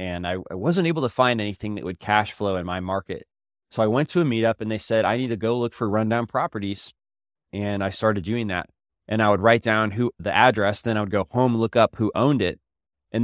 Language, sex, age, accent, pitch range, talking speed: English, male, 20-39, American, 100-120 Hz, 250 wpm